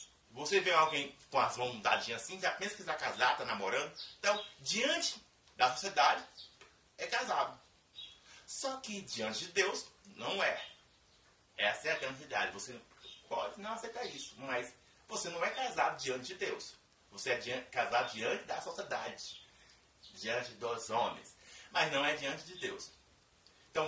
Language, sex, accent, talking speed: Portuguese, male, Brazilian, 150 wpm